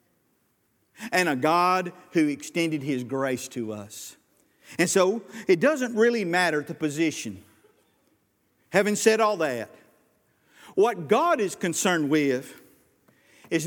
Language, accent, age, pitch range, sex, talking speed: English, American, 50-69, 155-205 Hz, male, 120 wpm